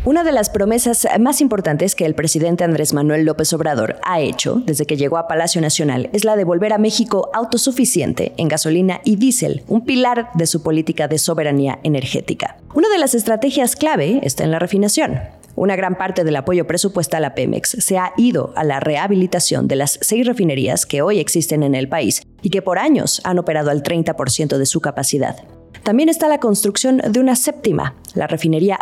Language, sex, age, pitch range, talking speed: Spanish, female, 30-49, 160-235 Hz, 195 wpm